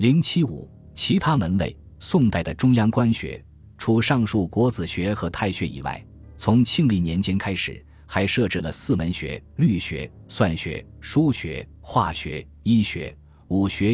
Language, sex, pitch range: Chinese, male, 80-115 Hz